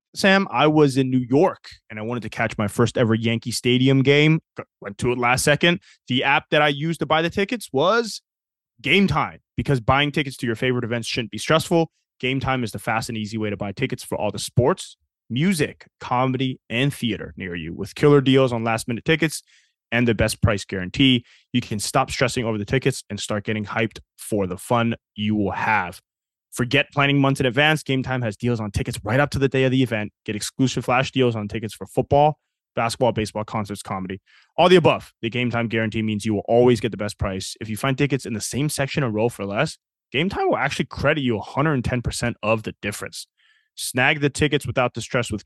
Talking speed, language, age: 220 wpm, English, 20-39